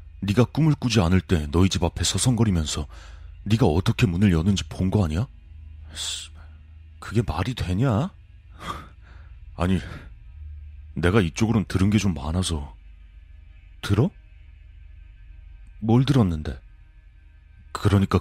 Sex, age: male, 30-49